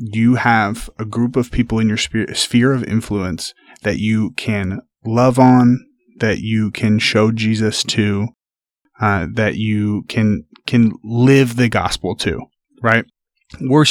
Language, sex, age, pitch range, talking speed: English, male, 30-49, 105-125 Hz, 145 wpm